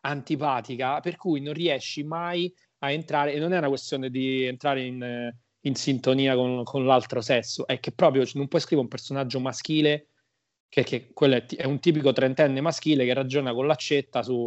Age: 30-49